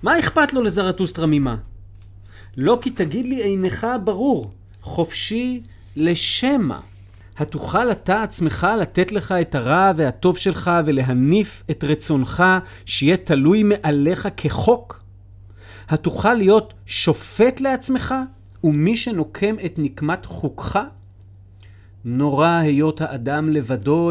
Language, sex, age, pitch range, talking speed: Hebrew, male, 40-59, 110-185 Hz, 105 wpm